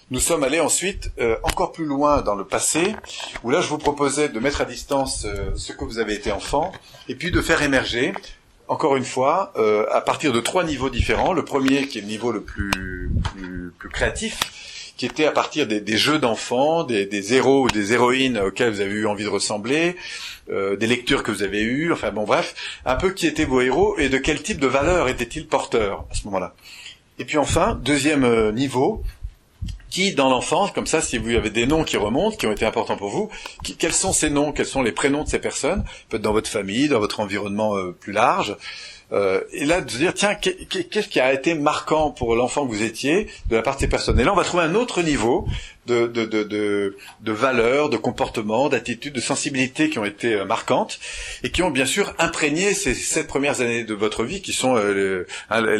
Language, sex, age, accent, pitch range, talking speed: French, male, 40-59, French, 110-155 Hz, 225 wpm